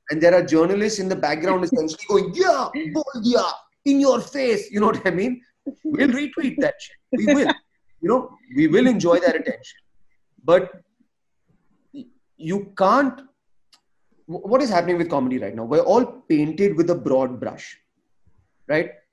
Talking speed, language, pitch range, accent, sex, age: 165 wpm, English, 145-215 Hz, Indian, male, 30-49